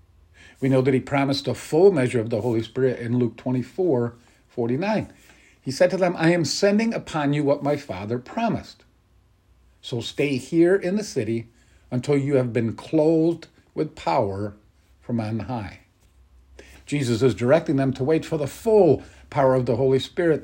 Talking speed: 170 wpm